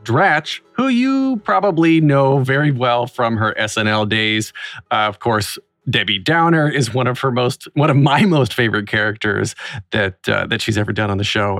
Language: English